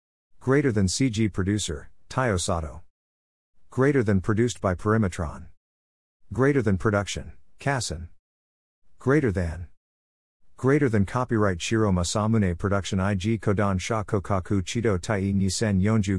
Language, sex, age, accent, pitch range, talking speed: English, male, 50-69, American, 85-115 Hz, 110 wpm